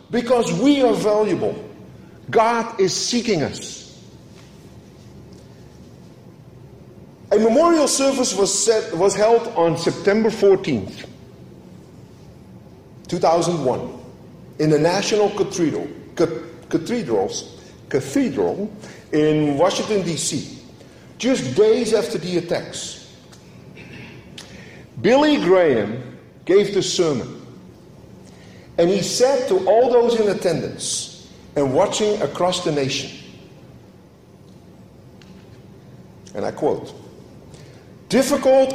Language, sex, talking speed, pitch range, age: English, male, 80 wpm, 175-250 Hz, 50-69